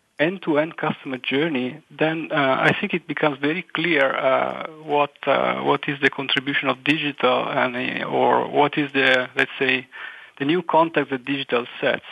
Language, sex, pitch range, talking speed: English, male, 135-155 Hz, 165 wpm